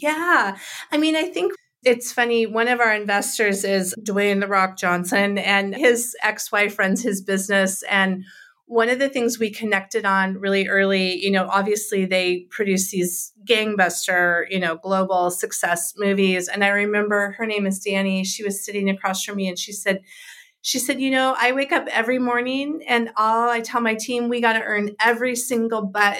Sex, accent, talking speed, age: female, American, 185 wpm, 30-49